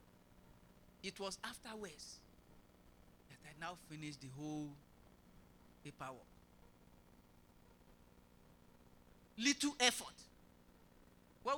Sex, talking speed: male, 65 wpm